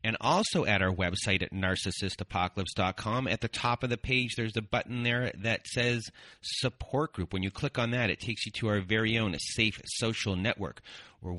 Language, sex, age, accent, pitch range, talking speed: English, male, 30-49, American, 100-130 Hz, 195 wpm